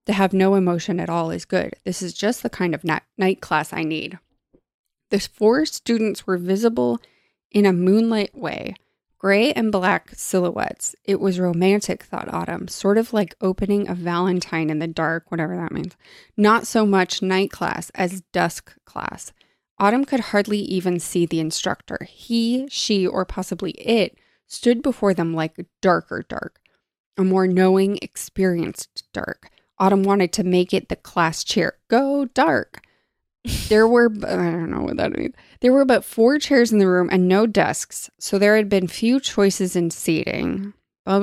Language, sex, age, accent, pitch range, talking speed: English, female, 20-39, American, 180-215 Hz, 170 wpm